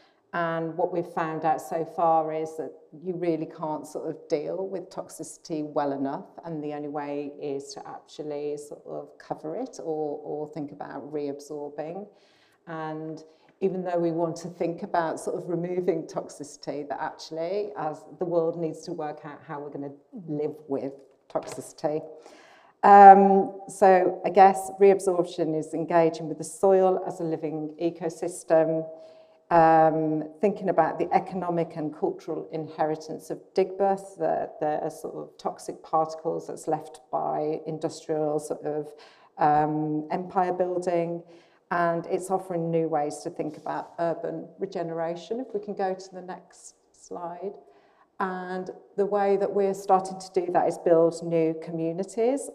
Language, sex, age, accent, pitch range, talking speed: English, female, 40-59, British, 155-180 Hz, 155 wpm